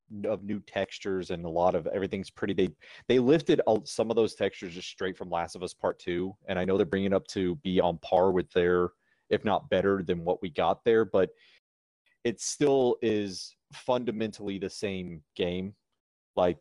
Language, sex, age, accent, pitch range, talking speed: English, male, 30-49, American, 90-120 Hz, 200 wpm